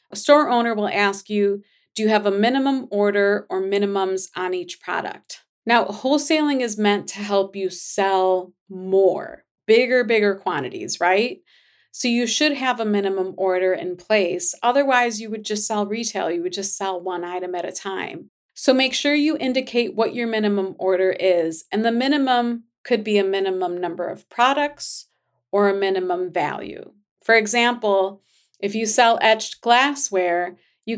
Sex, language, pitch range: female, English, 185-235 Hz